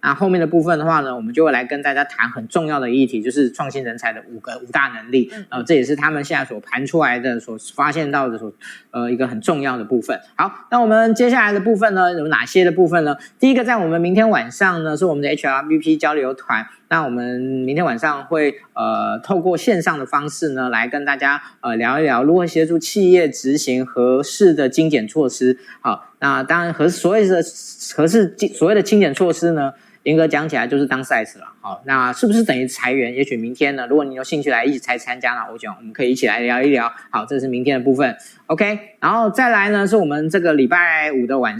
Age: 20-39